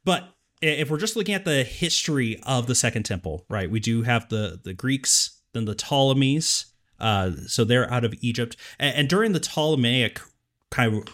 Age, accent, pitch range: 30-49, American, 115-155 Hz